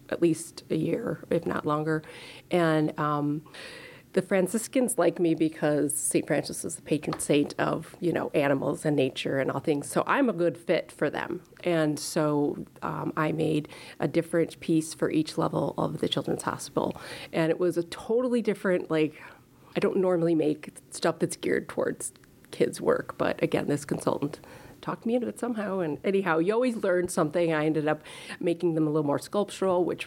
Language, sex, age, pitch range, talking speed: English, female, 30-49, 155-180 Hz, 185 wpm